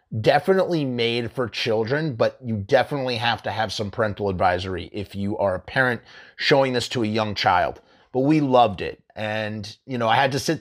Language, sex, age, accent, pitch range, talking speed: English, male, 30-49, American, 110-140 Hz, 200 wpm